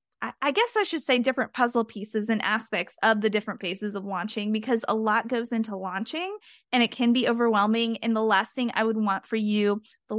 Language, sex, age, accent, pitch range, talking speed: English, female, 20-39, American, 215-260 Hz, 220 wpm